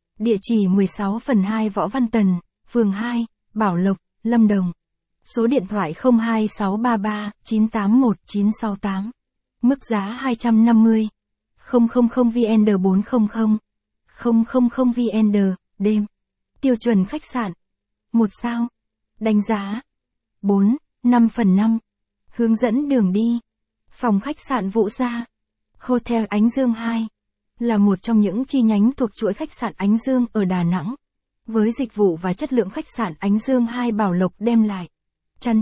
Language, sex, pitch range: Vietnamese, female, 205-240 Hz